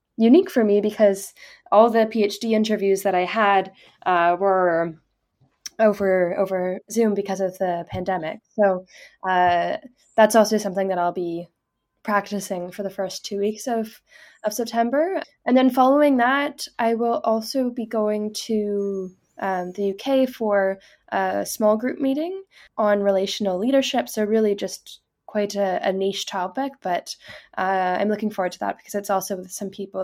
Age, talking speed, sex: 10-29, 160 wpm, female